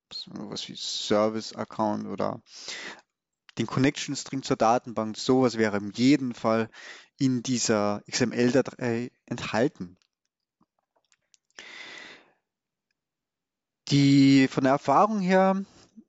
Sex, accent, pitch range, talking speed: male, German, 120-150 Hz, 80 wpm